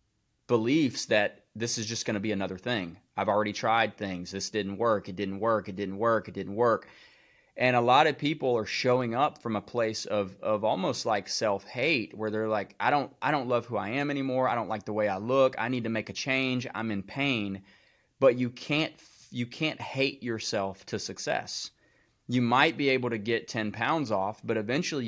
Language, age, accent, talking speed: English, 30-49, American, 215 wpm